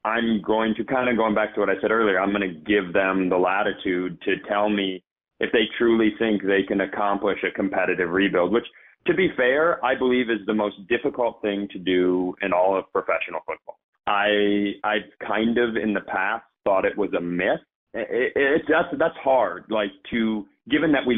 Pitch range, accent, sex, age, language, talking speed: 100-130 Hz, American, male, 30-49, English, 210 wpm